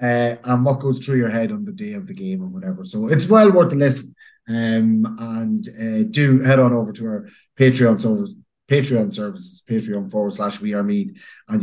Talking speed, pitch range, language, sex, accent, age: 210 wpm, 125-185 Hz, English, male, Irish, 30-49